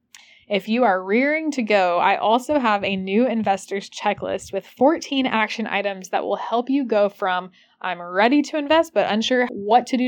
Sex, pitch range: female, 190-245 Hz